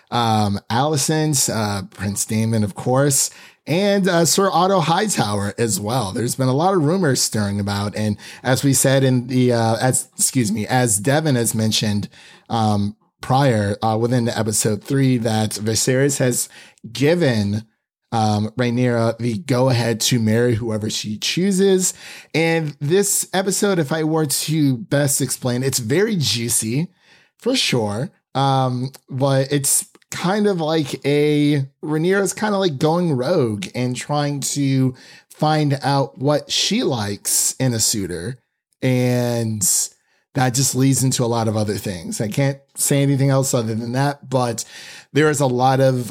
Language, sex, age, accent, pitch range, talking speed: English, male, 30-49, American, 115-145 Hz, 155 wpm